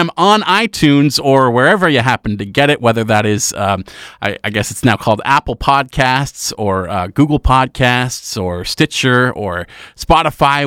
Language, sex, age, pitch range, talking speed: English, male, 30-49, 110-155 Hz, 165 wpm